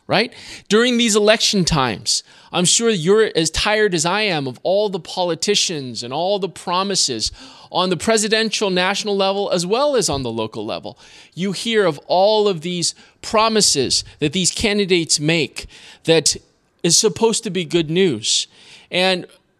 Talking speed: 160 wpm